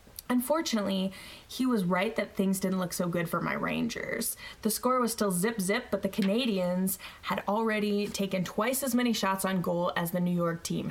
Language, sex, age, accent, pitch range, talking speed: English, female, 20-39, American, 185-215 Hz, 200 wpm